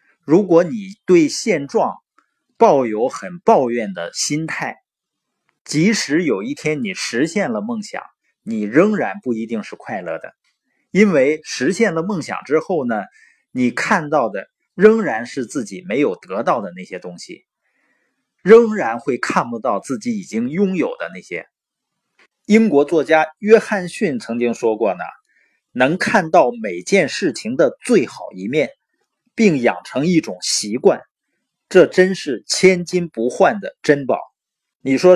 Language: Chinese